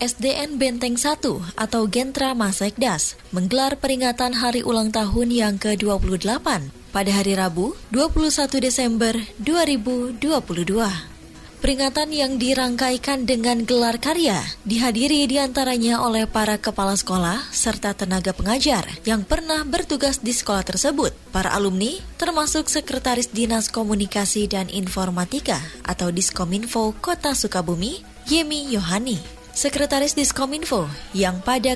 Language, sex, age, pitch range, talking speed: Indonesian, female, 20-39, 205-270 Hz, 110 wpm